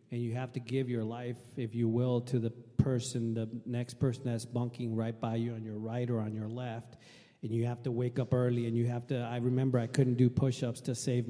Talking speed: 255 wpm